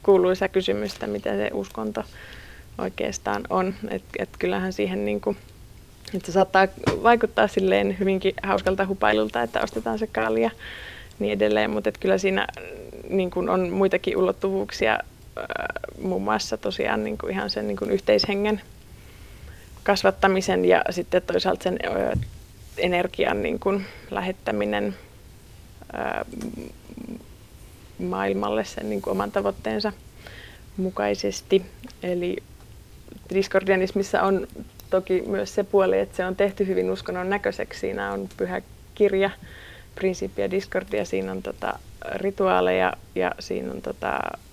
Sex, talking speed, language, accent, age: female, 120 wpm, Finnish, native, 20-39